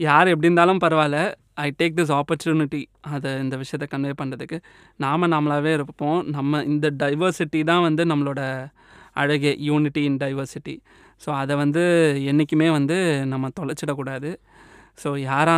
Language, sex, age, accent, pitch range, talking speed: Tamil, male, 20-39, native, 145-165 Hz, 135 wpm